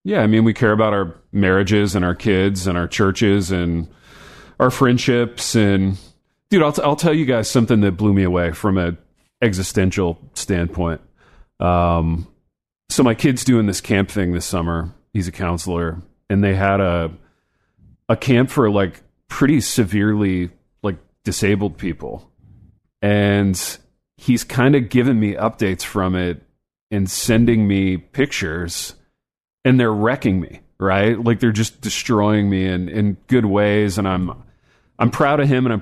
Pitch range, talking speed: 95-120 Hz, 160 wpm